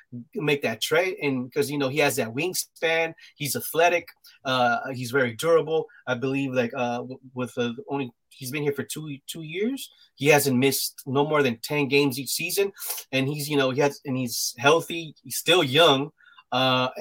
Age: 30-49